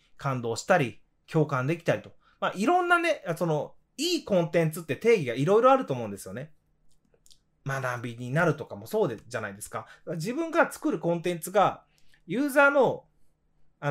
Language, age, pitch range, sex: Japanese, 20-39, 130-220 Hz, male